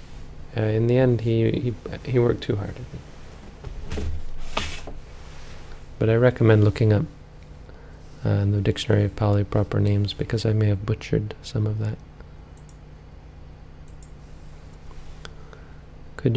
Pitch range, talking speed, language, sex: 75-115 Hz, 115 wpm, English, male